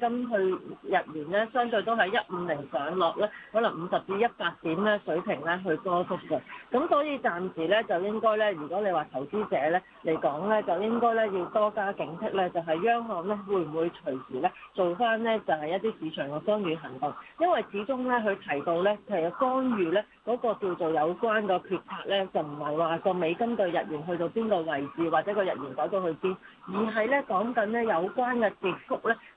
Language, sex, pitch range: Chinese, female, 170-220 Hz